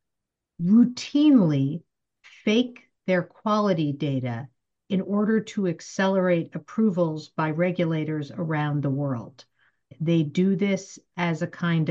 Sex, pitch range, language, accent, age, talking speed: female, 160-200 Hz, English, American, 50-69, 105 wpm